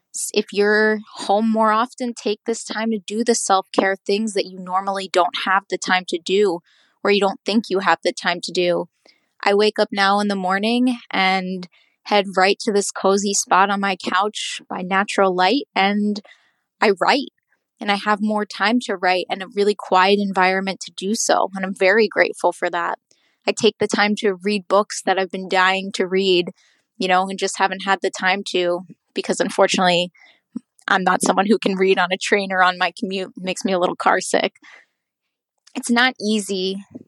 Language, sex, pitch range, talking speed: English, female, 190-210 Hz, 200 wpm